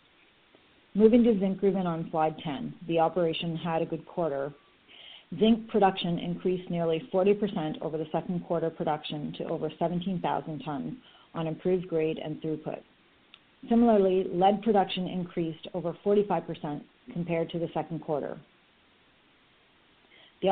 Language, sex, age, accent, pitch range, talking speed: English, female, 40-59, American, 155-185 Hz, 130 wpm